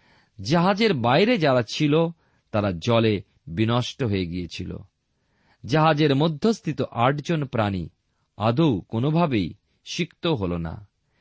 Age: 40-59